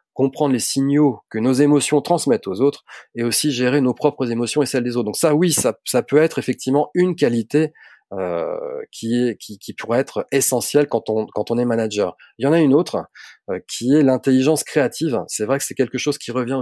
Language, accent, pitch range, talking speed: French, French, 115-150 Hz, 225 wpm